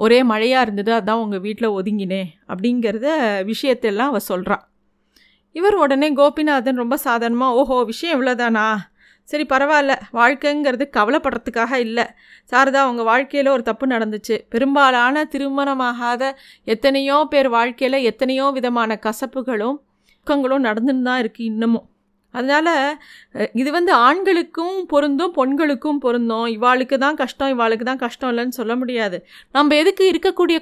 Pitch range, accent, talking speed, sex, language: 230-280 Hz, native, 120 wpm, female, Tamil